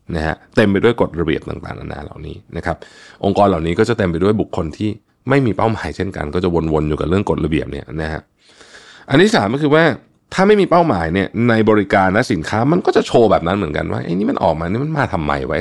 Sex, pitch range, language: male, 85-115 Hz, Thai